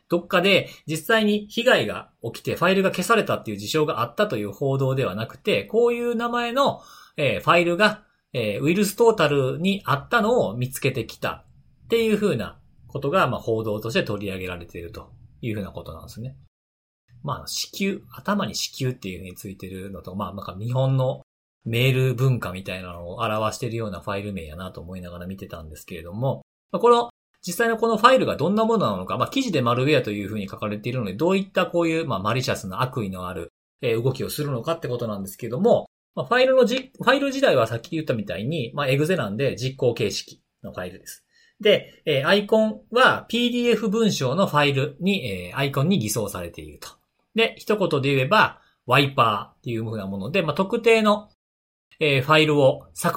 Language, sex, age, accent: Japanese, male, 40-59, native